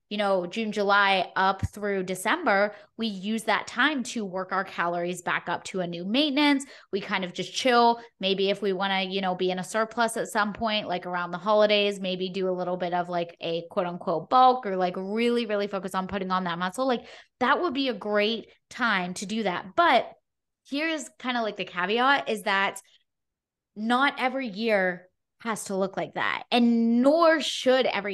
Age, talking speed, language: 20-39, 205 wpm, English